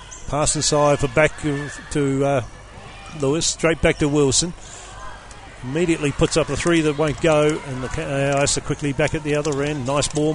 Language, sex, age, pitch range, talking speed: English, male, 50-69, 130-155 Hz, 180 wpm